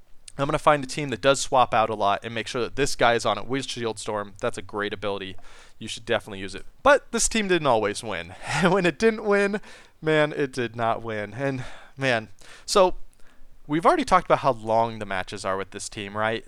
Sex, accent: male, American